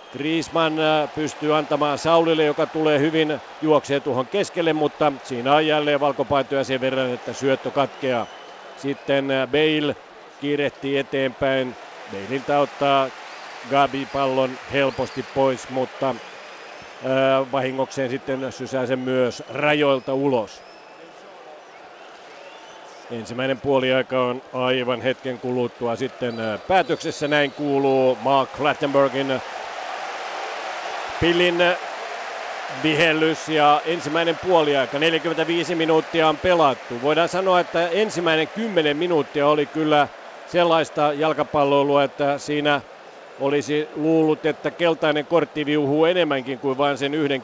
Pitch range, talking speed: 130-155 Hz, 105 wpm